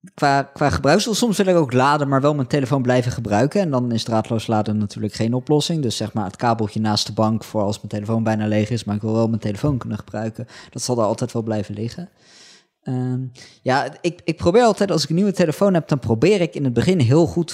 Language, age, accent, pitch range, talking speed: Dutch, 20-39, Dutch, 110-140 Hz, 245 wpm